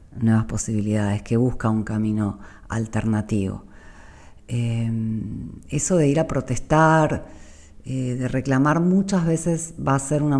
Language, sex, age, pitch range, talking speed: Spanish, female, 40-59, 110-140 Hz, 125 wpm